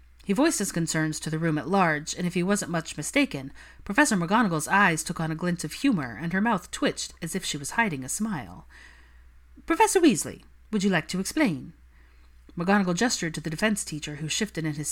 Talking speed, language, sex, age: 210 wpm, English, female, 40-59